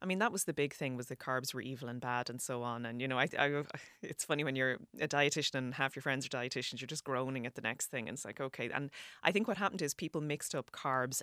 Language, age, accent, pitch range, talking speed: English, 20-39, Irish, 125-160 Hz, 295 wpm